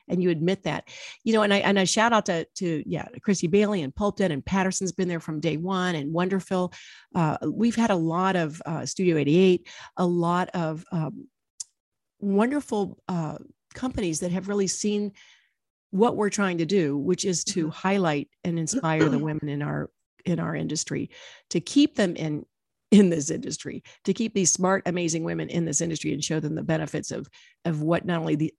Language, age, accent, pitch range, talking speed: English, 50-69, American, 160-195 Hz, 200 wpm